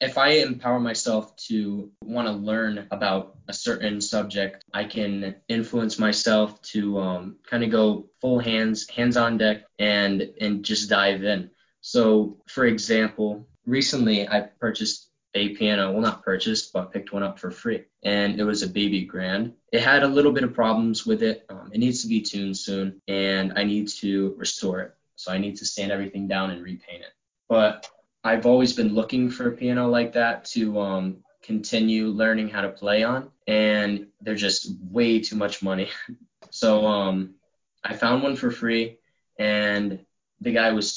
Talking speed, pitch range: 180 wpm, 100-115 Hz